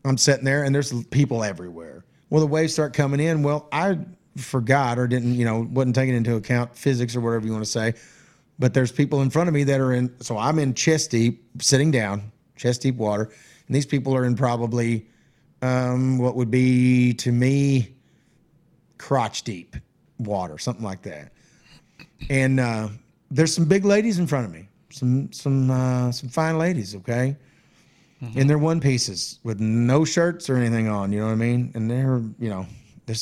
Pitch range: 115-145 Hz